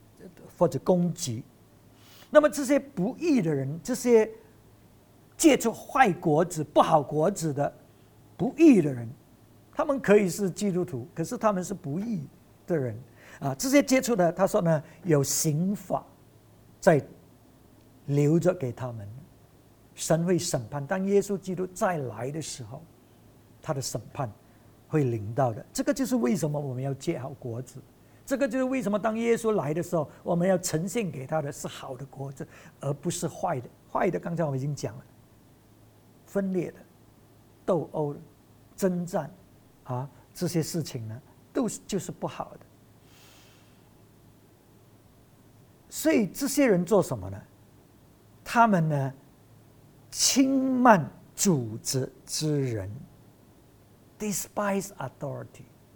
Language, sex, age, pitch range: English, male, 50-69, 125-190 Hz